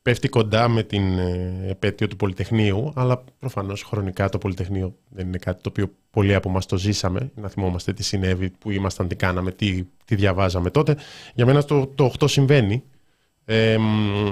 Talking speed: 170 wpm